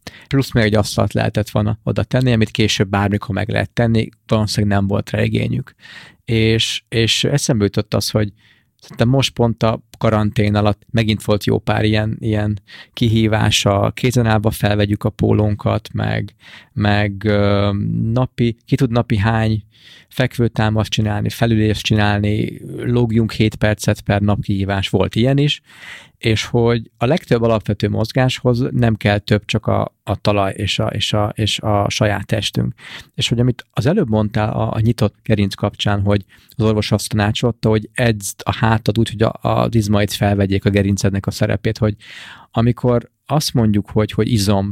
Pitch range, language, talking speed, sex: 105-115 Hz, Hungarian, 160 wpm, male